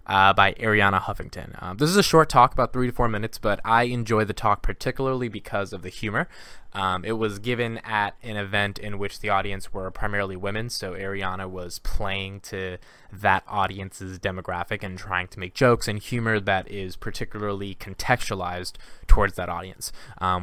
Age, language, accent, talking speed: 20-39, English, American, 180 wpm